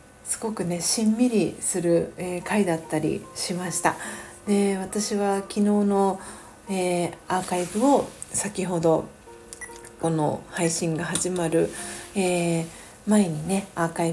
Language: Japanese